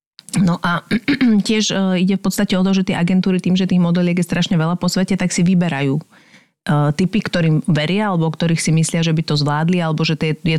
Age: 40-59